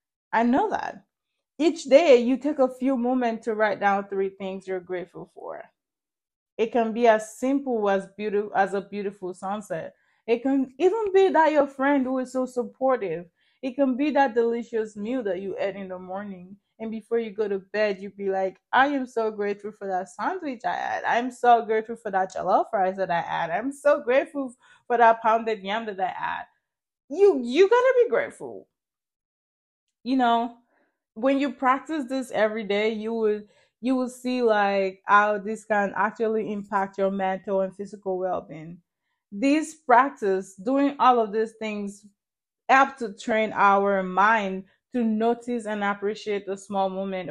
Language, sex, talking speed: English, female, 175 wpm